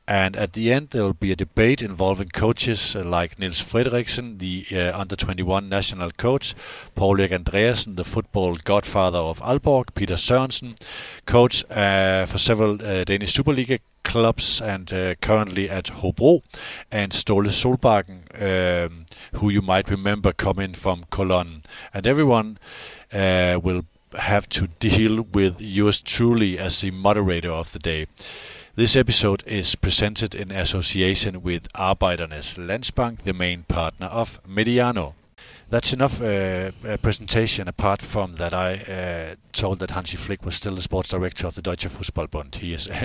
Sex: male